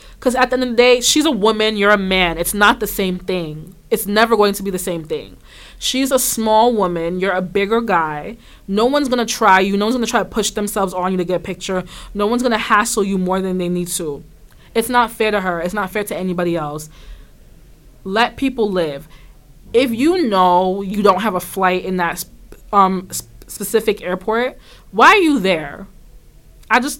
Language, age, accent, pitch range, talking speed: English, 20-39, American, 175-230 Hz, 220 wpm